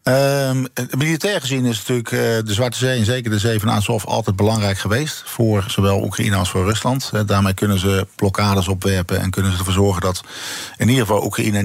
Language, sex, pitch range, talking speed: Dutch, male, 95-115 Hz, 195 wpm